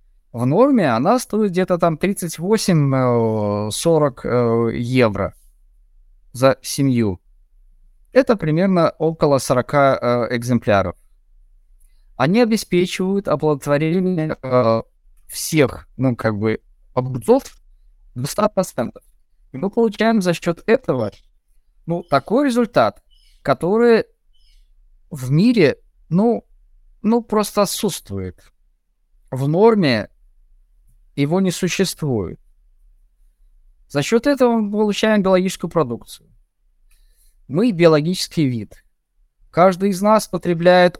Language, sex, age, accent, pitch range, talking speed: Russian, male, 20-39, native, 115-185 Hz, 90 wpm